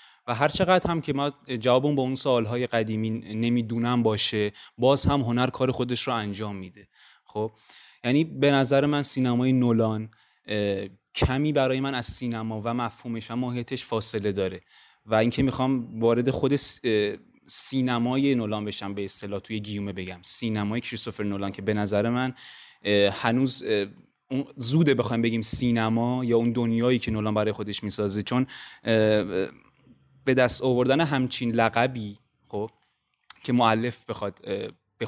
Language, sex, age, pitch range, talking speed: Persian, male, 20-39, 105-130 Hz, 140 wpm